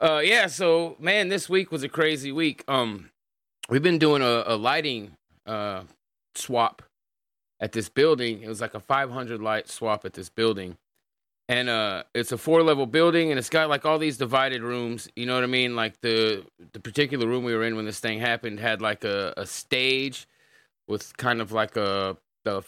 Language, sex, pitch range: English, male, 105-125 Hz